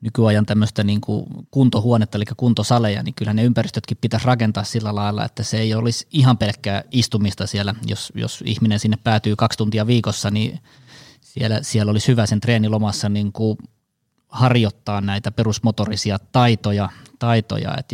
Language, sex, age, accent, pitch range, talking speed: Finnish, male, 20-39, native, 105-120 Hz, 145 wpm